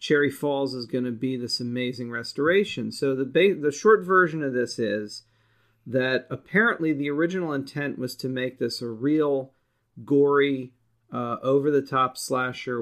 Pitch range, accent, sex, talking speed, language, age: 120-145 Hz, American, male, 165 wpm, English, 40-59